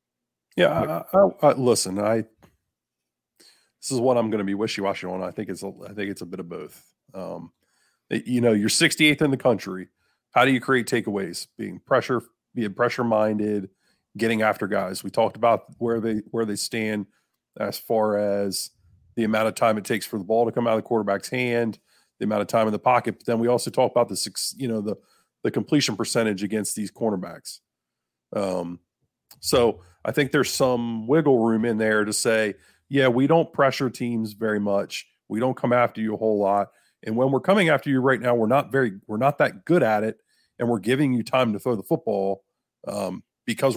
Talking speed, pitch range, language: 210 wpm, 105-130 Hz, English